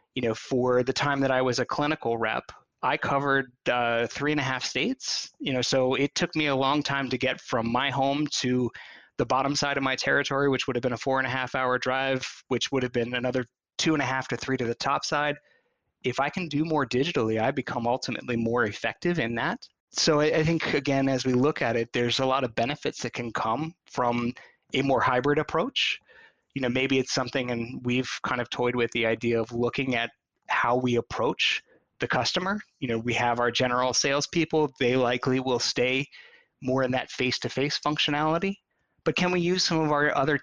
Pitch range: 125-145 Hz